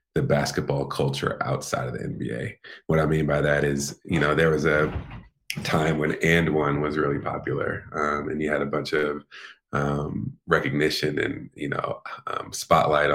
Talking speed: 180 wpm